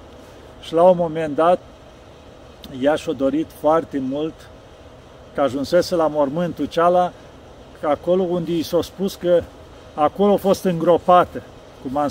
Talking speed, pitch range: 135 wpm, 150-190 Hz